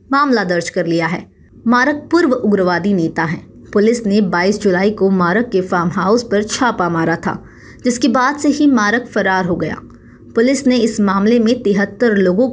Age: 20-39